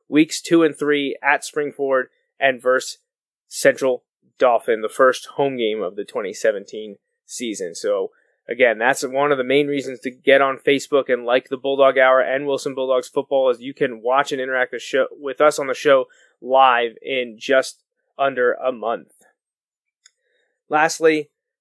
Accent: American